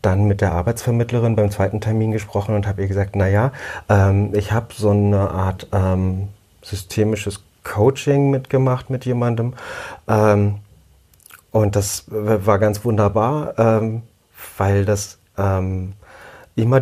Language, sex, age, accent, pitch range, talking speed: German, male, 30-49, German, 95-115 Hz, 130 wpm